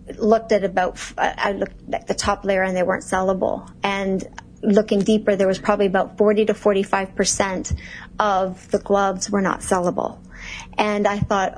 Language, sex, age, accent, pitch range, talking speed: English, female, 40-59, American, 195-220 Hz, 170 wpm